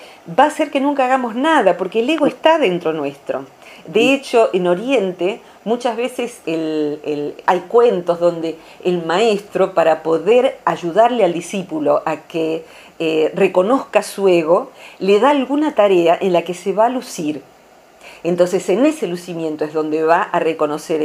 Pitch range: 165-260 Hz